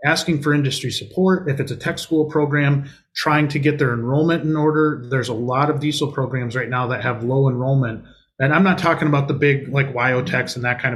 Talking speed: 225 wpm